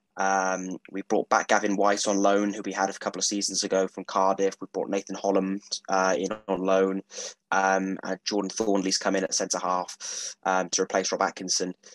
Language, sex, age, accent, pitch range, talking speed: English, male, 20-39, British, 95-105 Hz, 195 wpm